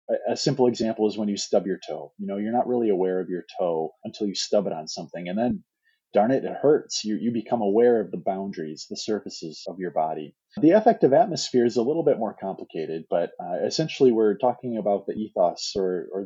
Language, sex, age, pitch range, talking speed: English, male, 30-49, 100-135 Hz, 230 wpm